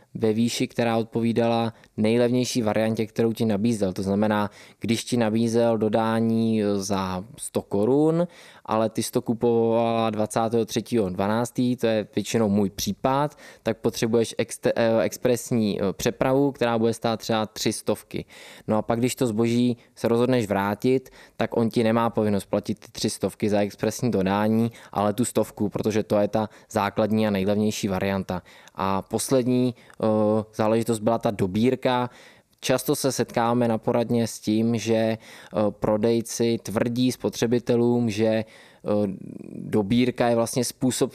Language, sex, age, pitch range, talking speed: Czech, male, 20-39, 105-120 Hz, 135 wpm